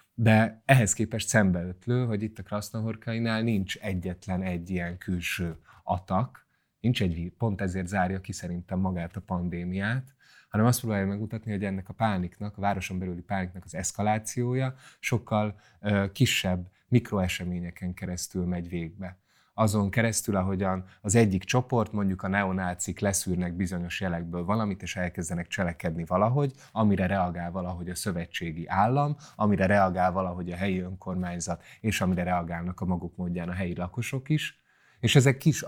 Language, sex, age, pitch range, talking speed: Hungarian, male, 30-49, 90-110 Hz, 145 wpm